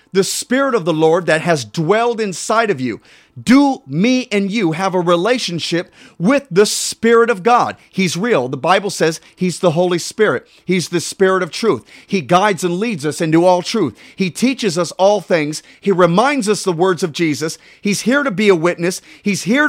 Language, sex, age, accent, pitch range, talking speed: English, male, 40-59, American, 180-230 Hz, 200 wpm